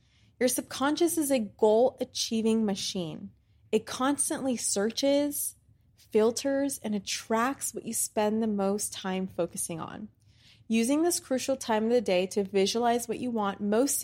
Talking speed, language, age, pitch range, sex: 140 wpm, English, 20-39, 190-235 Hz, female